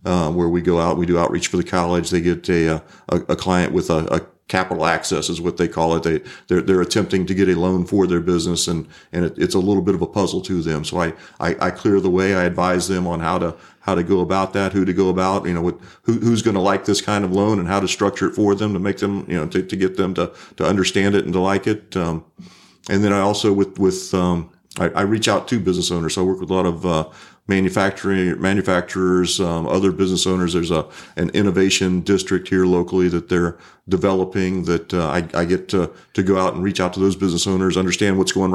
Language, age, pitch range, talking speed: English, 40-59, 85-95 Hz, 260 wpm